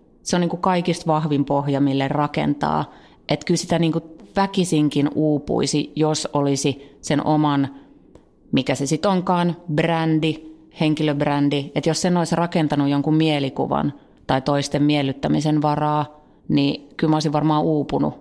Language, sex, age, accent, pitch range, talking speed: Finnish, female, 30-49, native, 145-165 Hz, 140 wpm